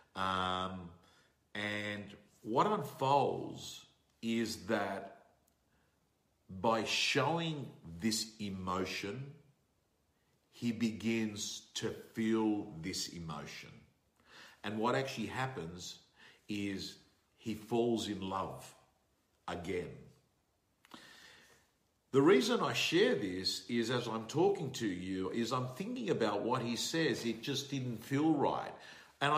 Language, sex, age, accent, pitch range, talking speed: English, male, 50-69, Australian, 95-130 Hz, 100 wpm